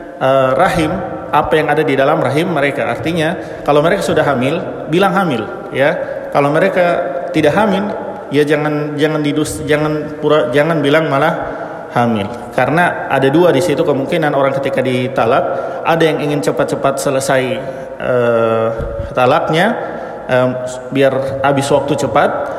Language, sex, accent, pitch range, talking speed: Indonesian, male, native, 130-165 Hz, 140 wpm